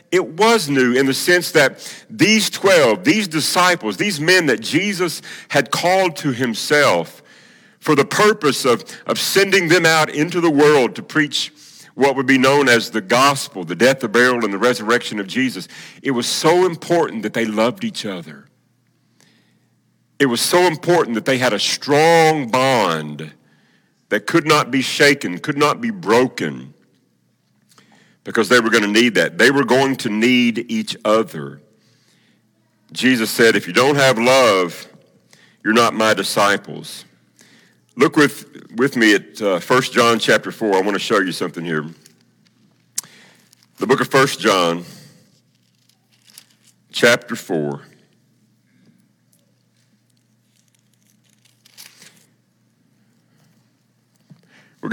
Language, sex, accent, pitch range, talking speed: English, male, American, 110-165 Hz, 140 wpm